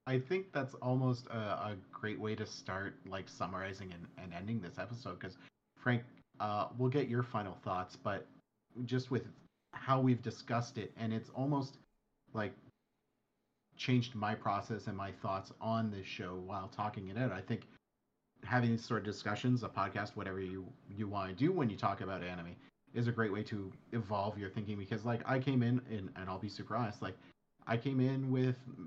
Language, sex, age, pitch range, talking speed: English, male, 40-59, 100-125 Hz, 190 wpm